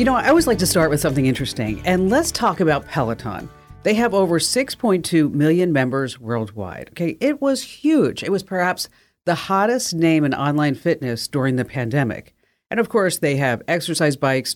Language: English